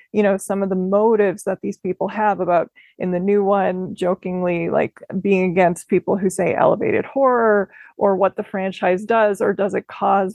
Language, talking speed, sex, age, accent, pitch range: English, 190 wpm, female, 20-39, American, 185-215 Hz